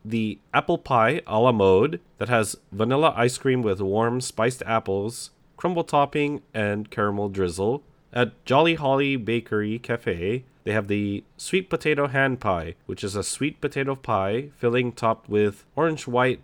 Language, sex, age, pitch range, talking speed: English, male, 30-49, 105-145 Hz, 155 wpm